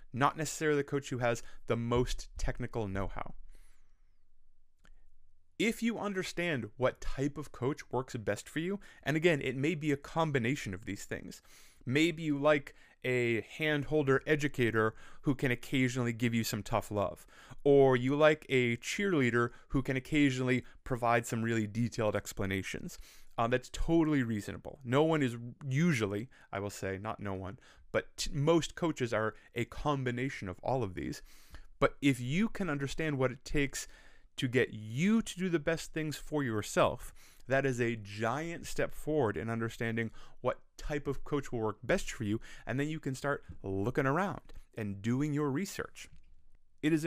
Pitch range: 115-150 Hz